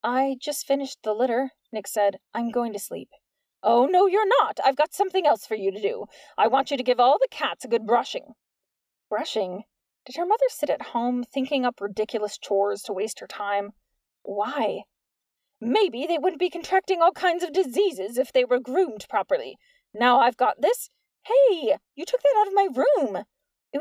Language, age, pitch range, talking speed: English, 20-39, 235-350 Hz, 195 wpm